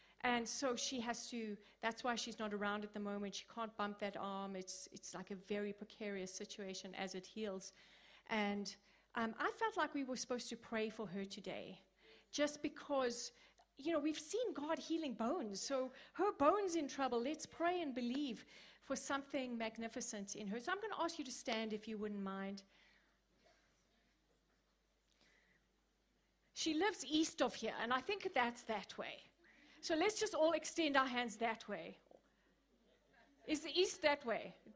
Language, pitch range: English, 220-320 Hz